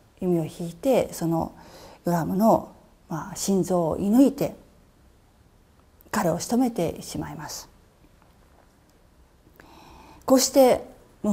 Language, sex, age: Japanese, female, 40-59